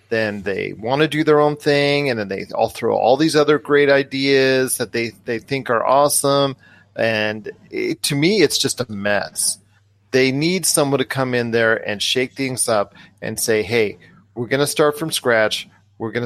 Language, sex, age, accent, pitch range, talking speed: English, male, 40-59, American, 115-135 Hz, 195 wpm